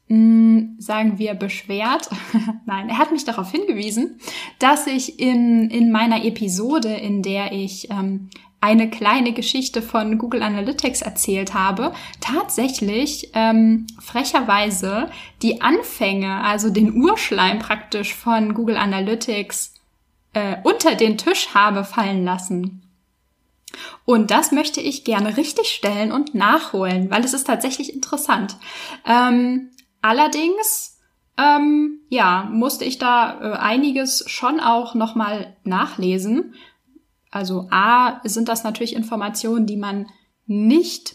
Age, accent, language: 10-29, German, German